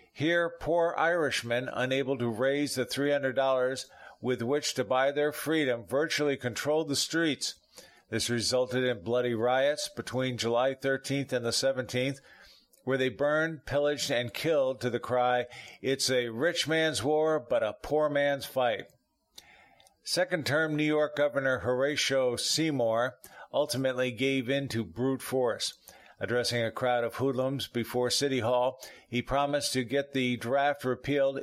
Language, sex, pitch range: English, male, 125-145 Hz